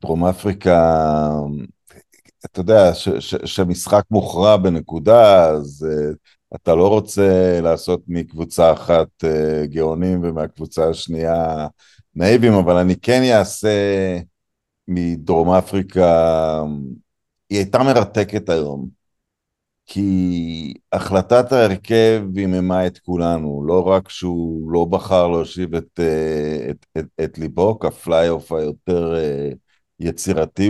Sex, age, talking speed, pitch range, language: male, 50-69, 110 wpm, 80-100 Hz, Hebrew